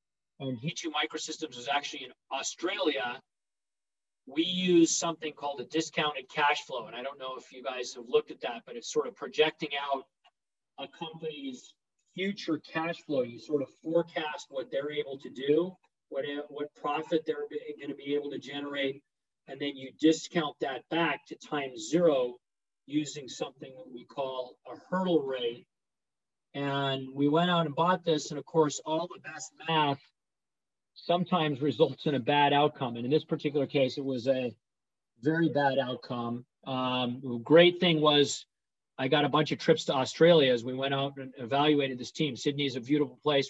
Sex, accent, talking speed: male, American, 180 wpm